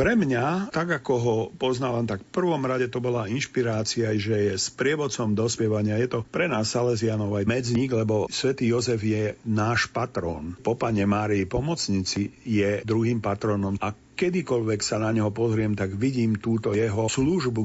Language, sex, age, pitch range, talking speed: Slovak, male, 50-69, 105-125 Hz, 165 wpm